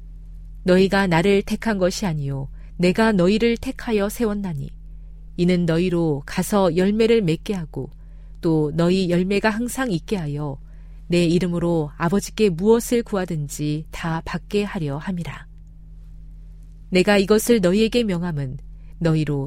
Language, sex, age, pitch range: Korean, female, 40-59, 145-205 Hz